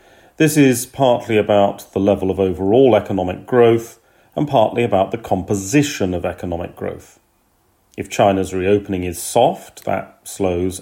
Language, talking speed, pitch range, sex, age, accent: English, 140 wpm, 95-115 Hz, male, 40-59, British